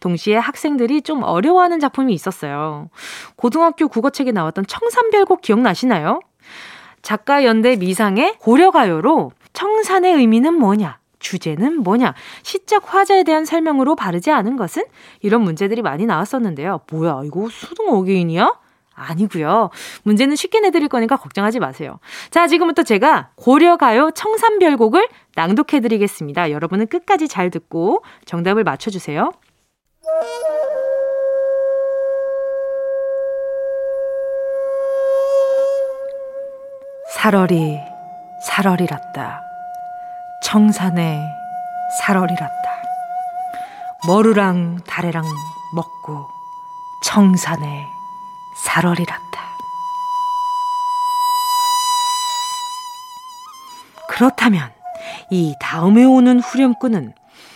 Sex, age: female, 20-39